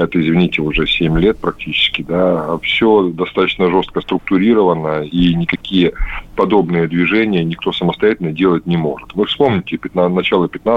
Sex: male